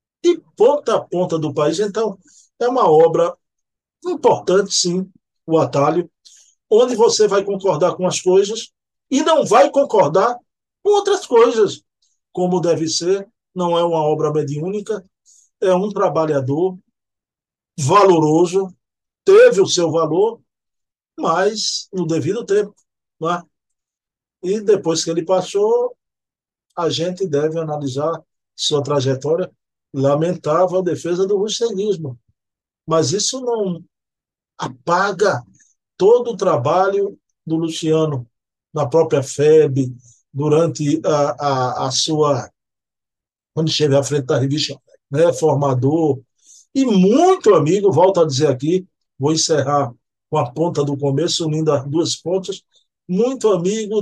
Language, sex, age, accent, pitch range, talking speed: Portuguese, male, 50-69, Brazilian, 150-200 Hz, 125 wpm